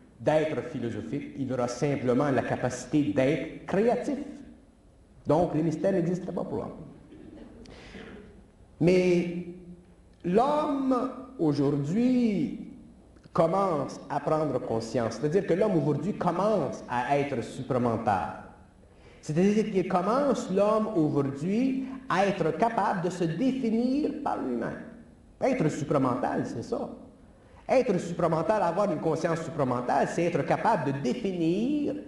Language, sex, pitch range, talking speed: French, male, 145-230 Hz, 110 wpm